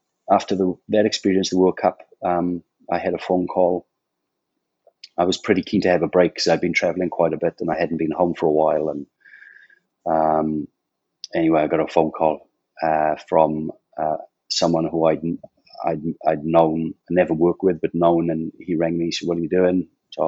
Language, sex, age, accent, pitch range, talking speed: English, male, 30-49, British, 80-90 Hz, 210 wpm